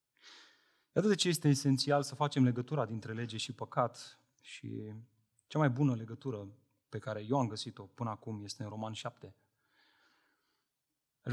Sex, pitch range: male, 115-155 Hz